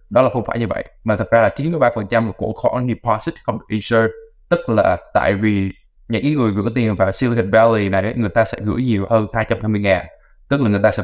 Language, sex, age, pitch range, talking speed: Vietnamese, male, 20-39, 105-120 Hz, 240 wpm